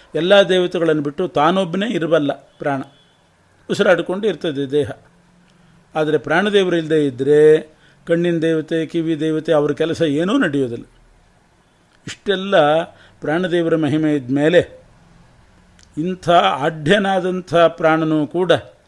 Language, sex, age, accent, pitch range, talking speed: Kannada, male, 50-69, native, 145-170 Hz, 90 wpm